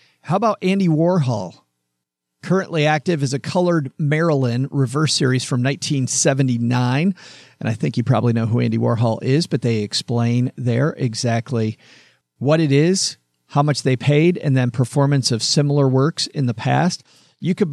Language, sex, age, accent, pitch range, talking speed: English, male, 50-69, American, 125-160 Hz, 160 wpm